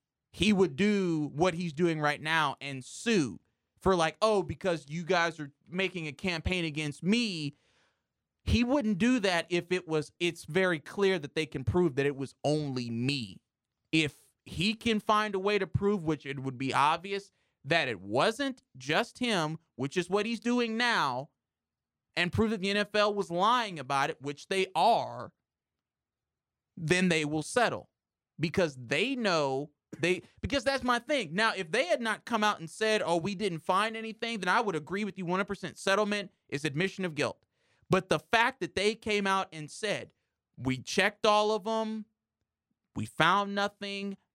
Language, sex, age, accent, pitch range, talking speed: English, male, 30-49, American, 155-210 Hz, 180 wpm